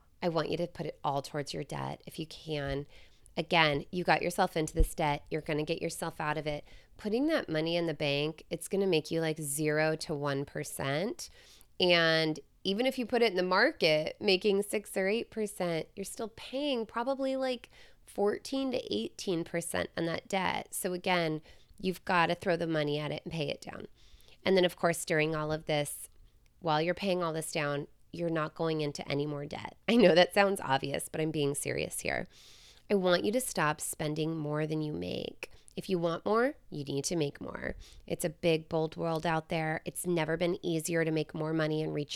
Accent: American